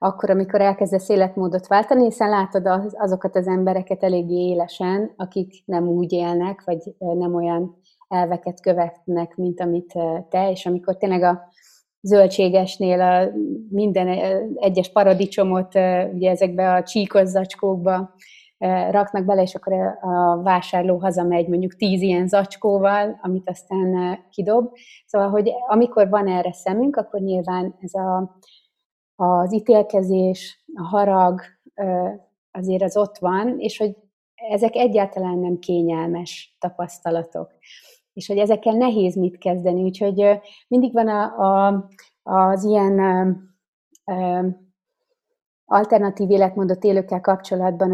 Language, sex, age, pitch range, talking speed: Hungarian, female, 30-49, 180-205 Hz, 115 wpm